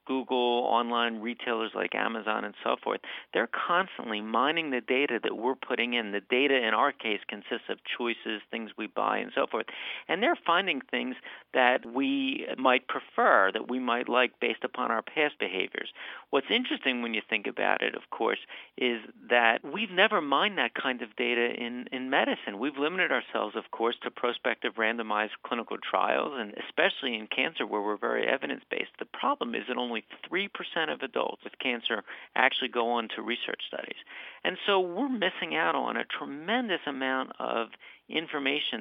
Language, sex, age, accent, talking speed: English, male, 50-69, American, 180 wpm